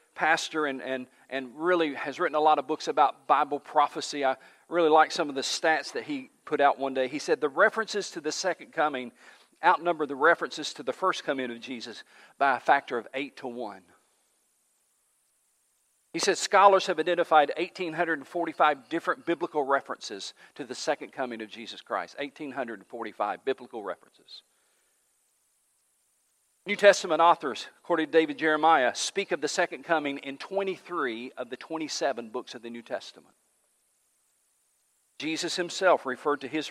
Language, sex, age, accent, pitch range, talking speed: English, male, 50-69, American, 130-170 Hz, 160 wpm